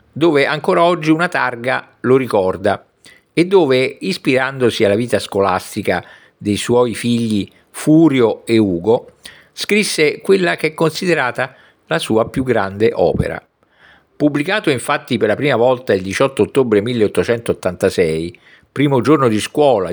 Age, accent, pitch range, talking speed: 50-69, native, 110-160 Hz, 130 wpm